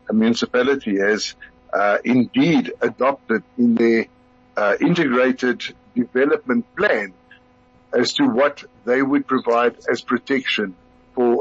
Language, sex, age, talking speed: English, male, 60-79, 110 wpm